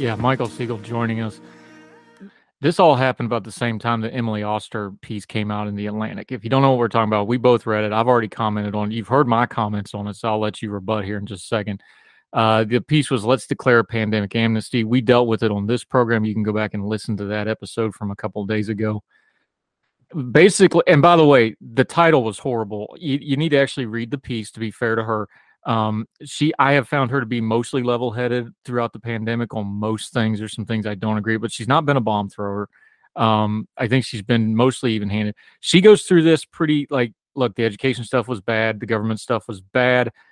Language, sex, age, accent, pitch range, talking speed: English, male, 30-49, American, 110-125 Hz, 240 wpm